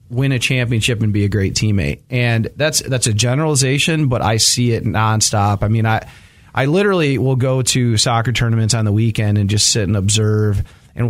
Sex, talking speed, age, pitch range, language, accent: male, 200 wpm, 30-49, 105-125 Hz, English, American